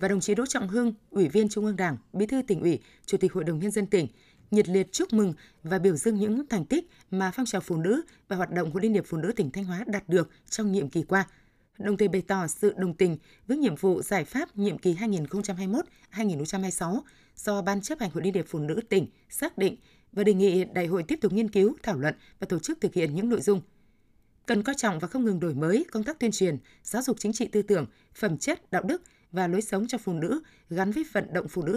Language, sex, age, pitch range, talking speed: Vietnamese, female, 20-39, 180-225 Hz, 255 wpm